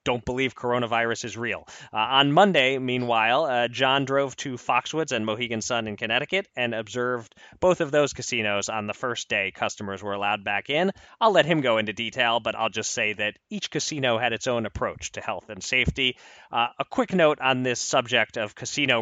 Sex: male